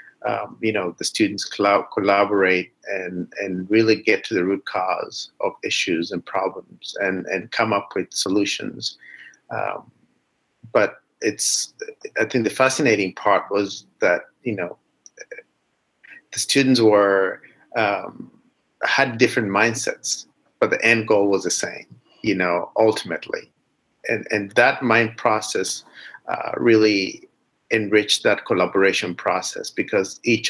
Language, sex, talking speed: English, male, 130 wpm